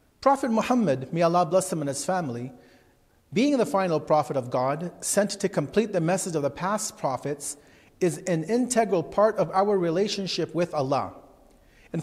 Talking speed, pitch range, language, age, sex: 170 wpm, 145-190 Hz, English, 40-59, male